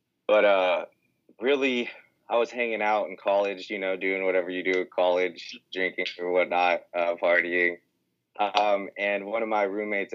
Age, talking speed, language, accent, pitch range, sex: 20-39, 165 wpm, English, American, 90-100 Hz, male